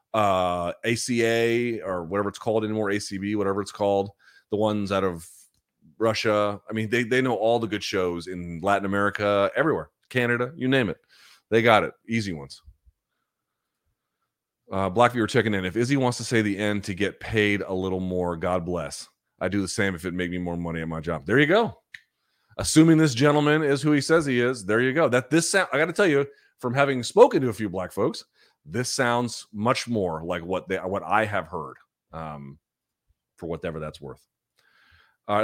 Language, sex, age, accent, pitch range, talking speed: English, male, 30-49, American, 90-120 Hz, 200 wpm